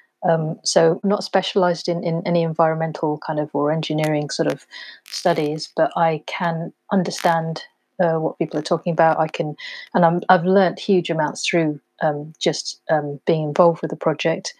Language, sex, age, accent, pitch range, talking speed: English, female, 40-59, British, 160-190 Hz, 175 wpm